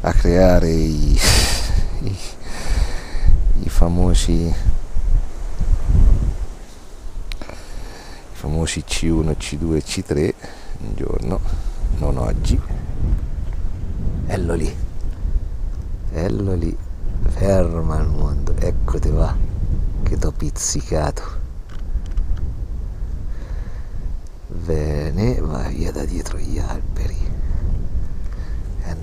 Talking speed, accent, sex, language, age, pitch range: 75 wpm, native, male, Italian, 50-69, 75-95 Hz